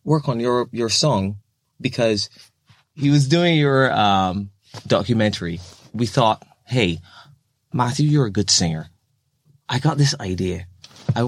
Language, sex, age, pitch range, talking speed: English, male, 20-39, 100-130 Hz, 135 wpm